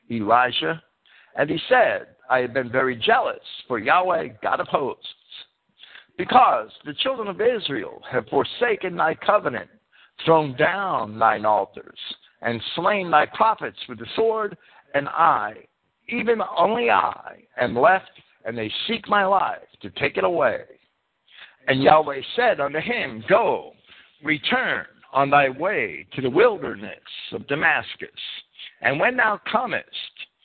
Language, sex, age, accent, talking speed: English, male, 60-79, American, 135 wpm